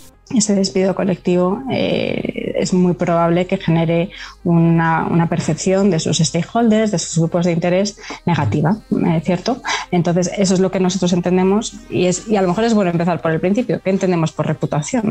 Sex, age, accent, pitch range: female, 20-39, Spanish, 165-190 Hz